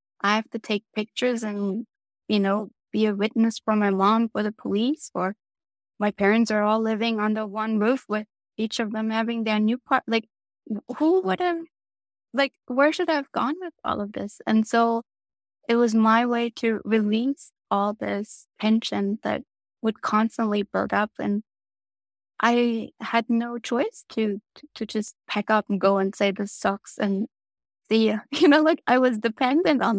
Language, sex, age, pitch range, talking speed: English, female, 20-39, 205-230 Hz, 180 wpm